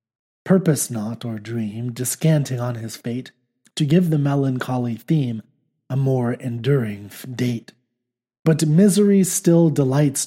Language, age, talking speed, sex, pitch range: English, 30-49, 125 wpm, male, 120-160 Hz